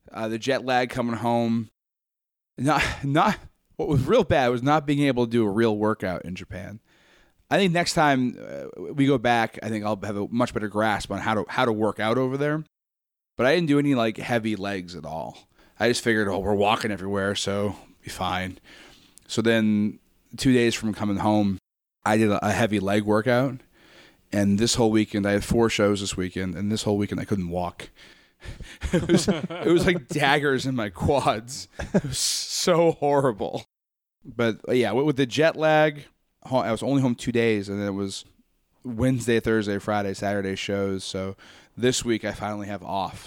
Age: 30-49